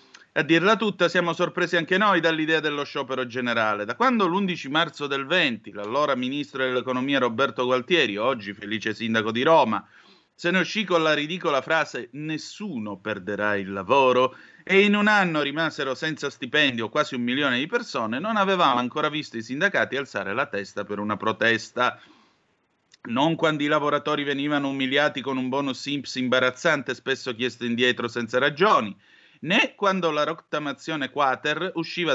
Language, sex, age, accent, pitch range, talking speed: Italian, male, 30-49, native, 125-165 Hz, 155 wpm